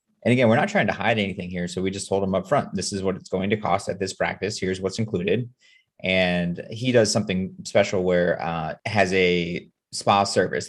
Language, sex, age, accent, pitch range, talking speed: English, male, 30-49, American, 90-115 Hz, 225 wpm